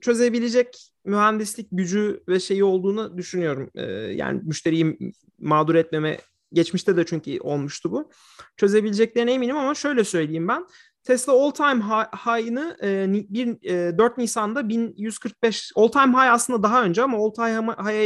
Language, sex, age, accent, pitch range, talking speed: Turkish, male, 40-59, native, 170-235 Hz, 130 wpm